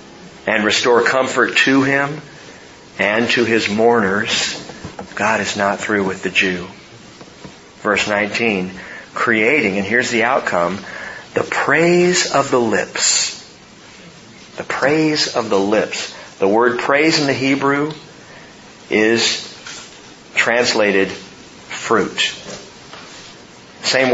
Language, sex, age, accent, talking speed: English, male, 40-59, American, 105 wpm